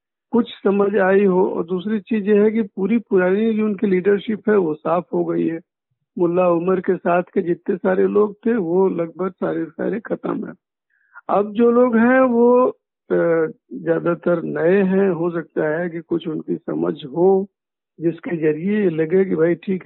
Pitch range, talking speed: 165-205 Hz, 180 wpm